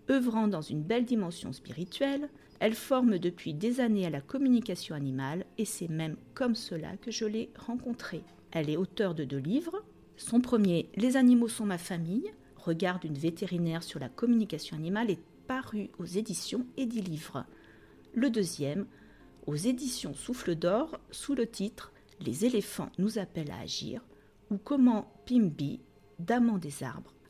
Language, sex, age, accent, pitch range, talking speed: French, female, 40-59, French, 160-230 Hz, 155 wpm